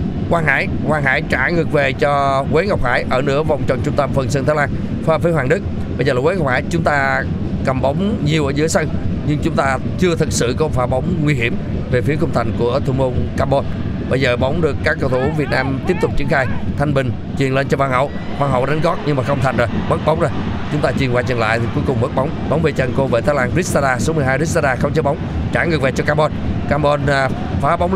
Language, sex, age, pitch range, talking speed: Vietnamese, male, 20-39, 130-160 Hz, 265 wpm